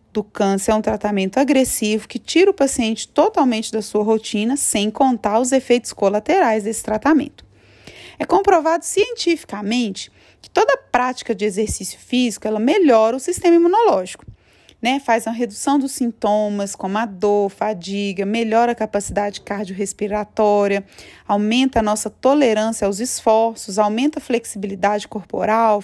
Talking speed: 140 wpm